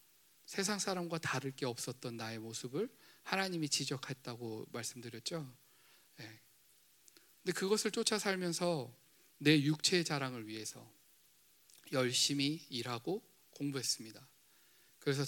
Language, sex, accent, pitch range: Korean, male, native, 125-165 Hz